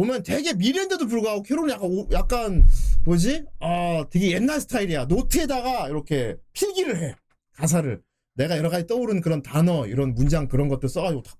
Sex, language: male, Korean